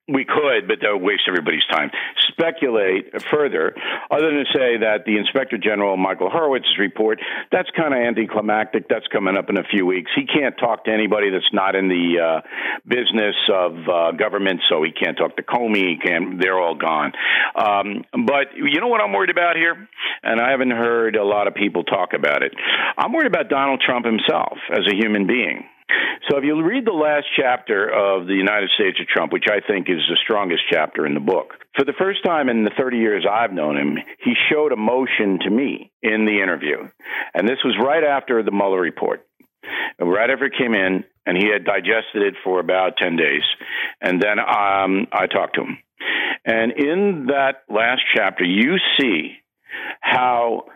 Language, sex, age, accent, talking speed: English, male, 50-69, American, 195 wpm